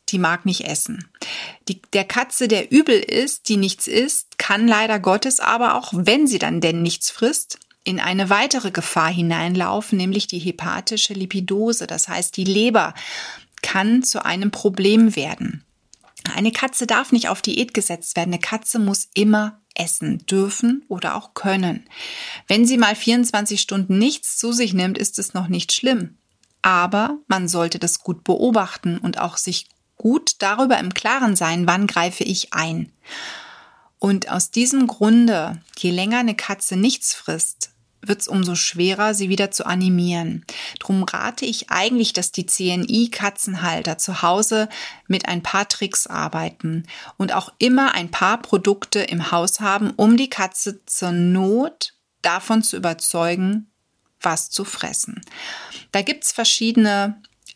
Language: German